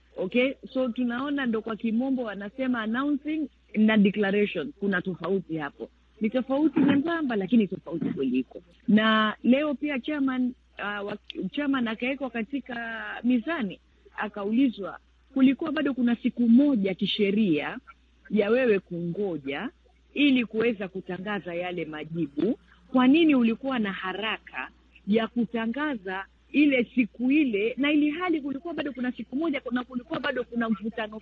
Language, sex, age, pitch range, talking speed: Swahili, female, 40-59, 205-270 Hz, 125 wpm